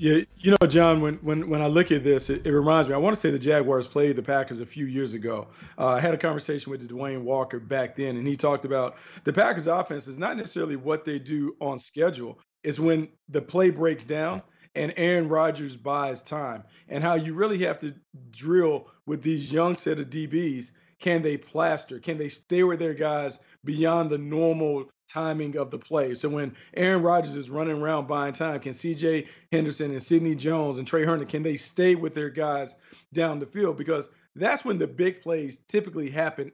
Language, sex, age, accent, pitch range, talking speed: English, male, 40-59, American, 145-165 Hz, 210 wpm